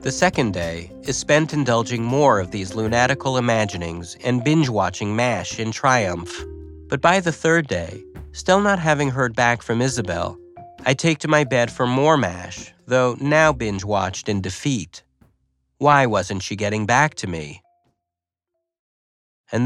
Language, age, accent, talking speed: English, 40-59, American, 150 wpm